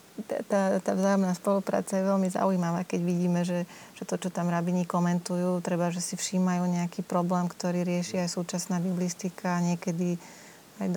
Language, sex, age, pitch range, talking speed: Slovak, female, 30-49, 180-200 Hz, 165 wpm